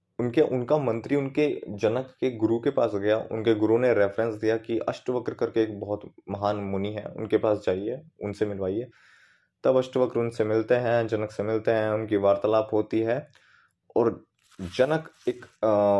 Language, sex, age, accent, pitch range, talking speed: Hindi, male, 20-39, native, 105-125 Hz, 170 wpm